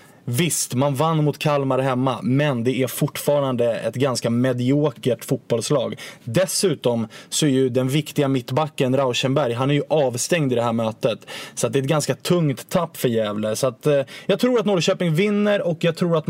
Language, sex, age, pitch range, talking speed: English, male, 20-39, 130-165 Hz, 190 wpm